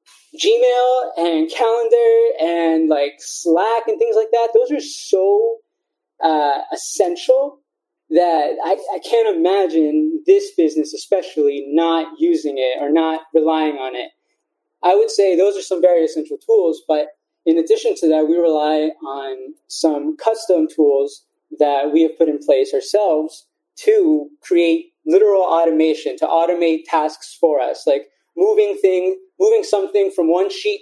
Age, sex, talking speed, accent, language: 20-39, male, 145 wpm, American, English